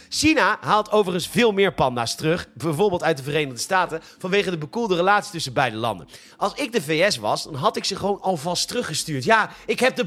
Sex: male